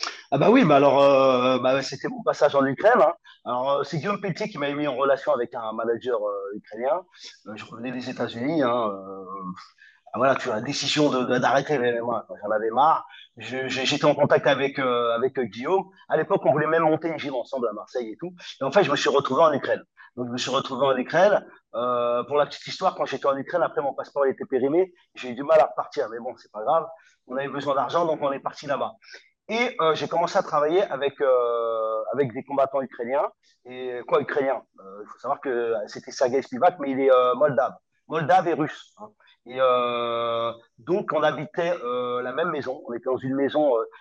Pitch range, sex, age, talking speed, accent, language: 125-160 Hz, male, 30-49, 230 wpm, French, French